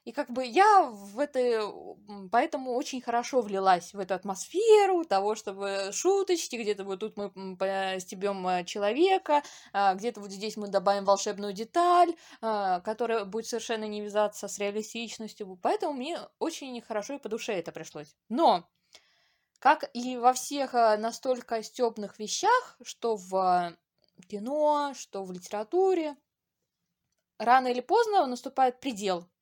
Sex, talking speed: female, 130 wpm